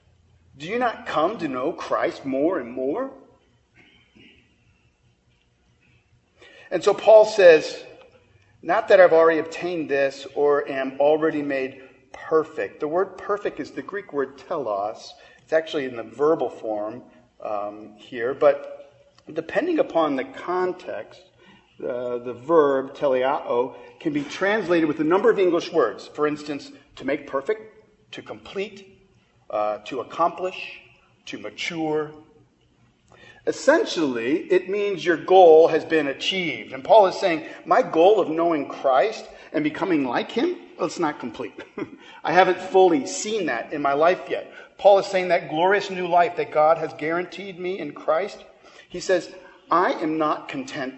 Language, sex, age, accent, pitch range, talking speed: English, male, 40-59, American, 135-195 Hz, 150 wpm